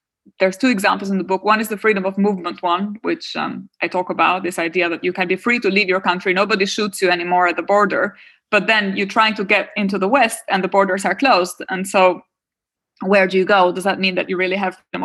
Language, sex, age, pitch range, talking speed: German, female, 20-39, 180-205 Hz, 255 wpm